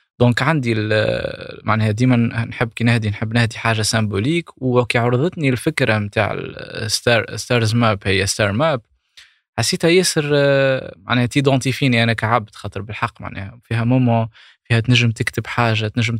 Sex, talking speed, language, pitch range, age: male, 140 wpm, Arabic, 110-140 Hz, 20-39